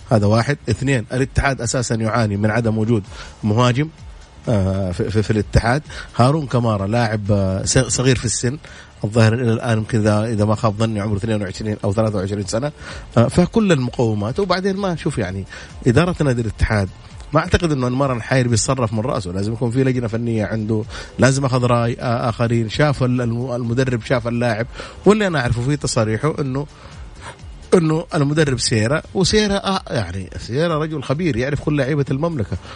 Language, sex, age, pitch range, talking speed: English, male, 30-49, 110-145 Hz, 145 wpm